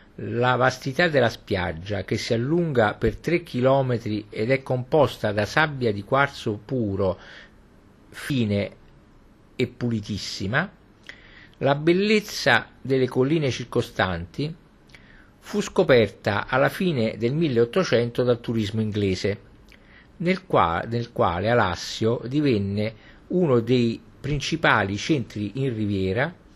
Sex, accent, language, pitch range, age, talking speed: male, native, Italian, 105-140 Hz, 50-69, 105 wpm